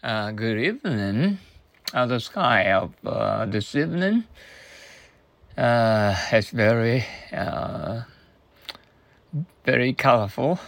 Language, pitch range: Japanese, 110-150 Hz